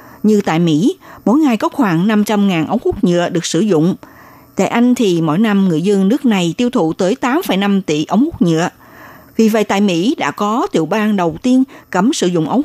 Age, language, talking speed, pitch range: 60-79, Vietnamese, 215 wpm, 175-240 Hz